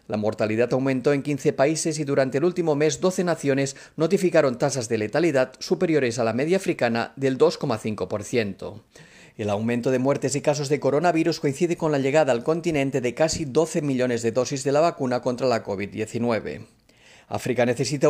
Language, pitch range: Spanish, 125-165 Hz